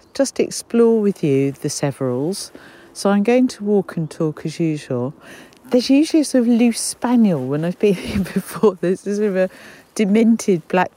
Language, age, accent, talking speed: English, 50-69, British, 185 wpm